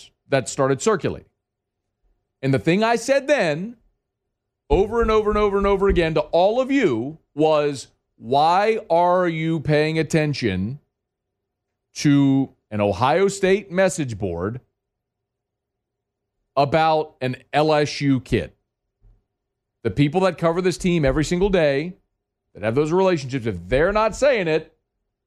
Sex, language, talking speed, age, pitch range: male, English, 130 wpm, 40-59, 105-150 Hz